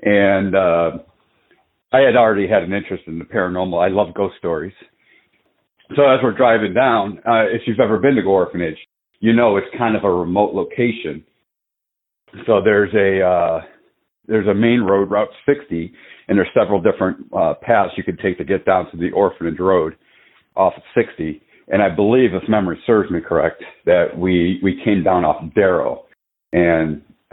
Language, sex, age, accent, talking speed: English, male, 50-69, American, 180 wpm